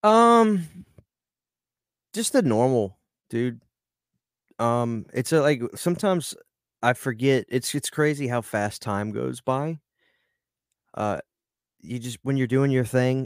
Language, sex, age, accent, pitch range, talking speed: English, male, 30-49, American, 105-130 Hz, 125 wpm